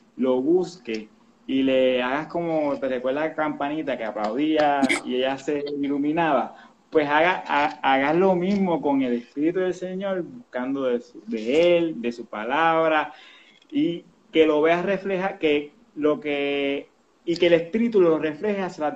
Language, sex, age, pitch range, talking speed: Spanish, male, 30-49, 140-195 Hz, 160 wpm